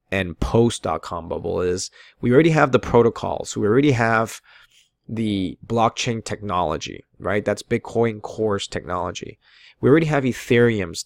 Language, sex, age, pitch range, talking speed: English, male, 20-39, 95-115 Hz, 140 wpm